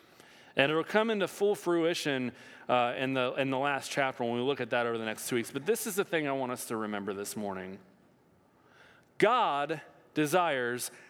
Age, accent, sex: 40-59, American, male